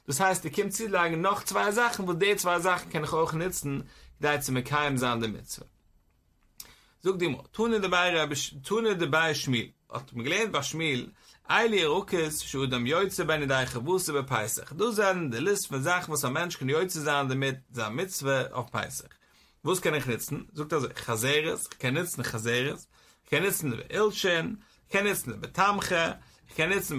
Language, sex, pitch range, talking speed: English, male, 130-180 Hz, 90 wpm